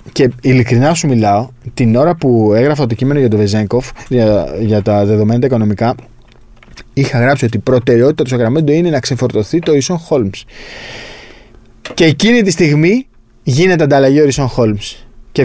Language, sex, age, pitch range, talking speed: Greek, male, 20-39, 105-135 Hz, 165 wpm